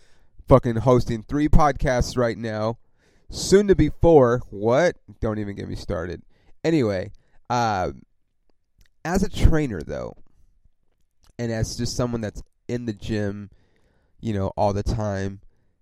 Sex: male